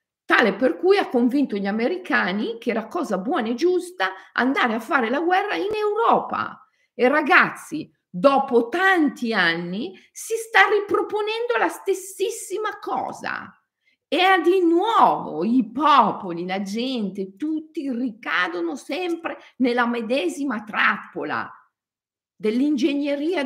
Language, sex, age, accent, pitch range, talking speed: Italian, female, 50-69, native, 205-295 Hz, 120 wpm